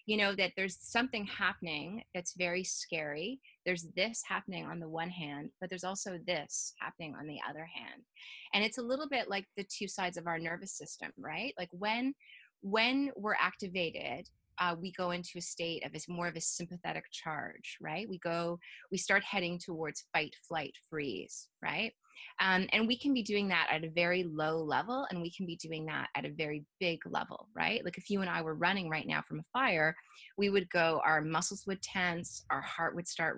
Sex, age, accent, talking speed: female, 20-39, American, 205 wpm